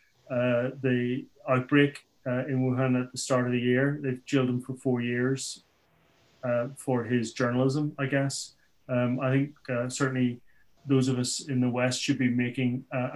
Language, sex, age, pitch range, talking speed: English, male, 30-49, 125-135 Hz, 180 wpm